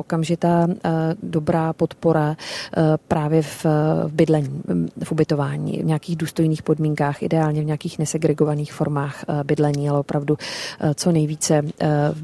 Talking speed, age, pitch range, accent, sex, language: 115 wpm, 30-49, 155-175 Hz, native, female, Czech